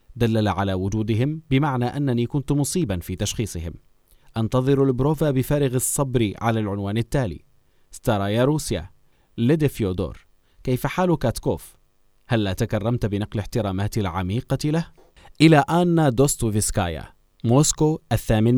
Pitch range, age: 100-125 Hz, 30-49